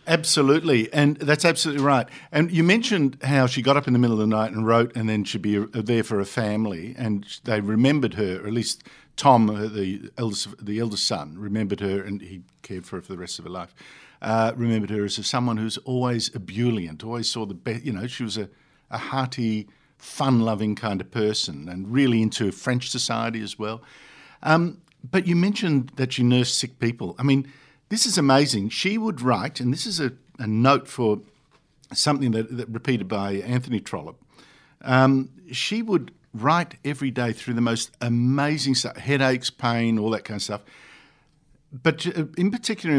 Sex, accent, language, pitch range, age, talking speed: male, Australian, English, 110-140 Hz, 50-69, 190 wpm